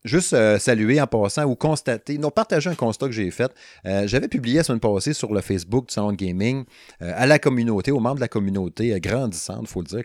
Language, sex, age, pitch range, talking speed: French, male, 30-49, 95-125 Hz, 250 wpm